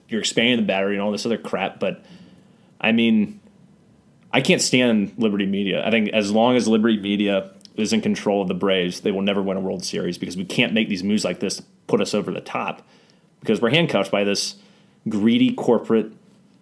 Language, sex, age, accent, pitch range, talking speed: English, male, 30-49, American, 100-145 Hz, 210 wpm